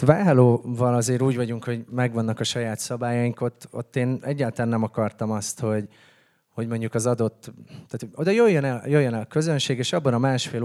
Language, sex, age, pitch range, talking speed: Hungarian, male, 30-49, 115-135 Hz, 190 wpm